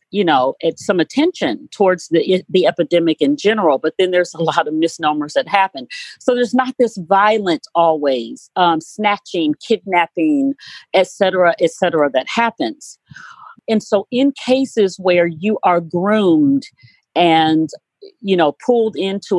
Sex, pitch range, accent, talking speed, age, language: female, 160-215 Hz, American, 150 wpm, 40-59, English